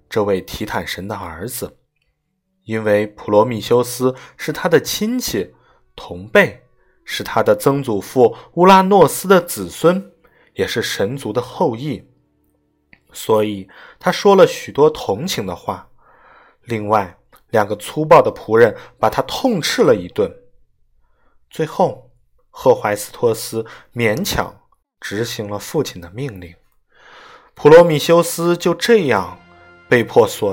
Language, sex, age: Chinese, male, 20-39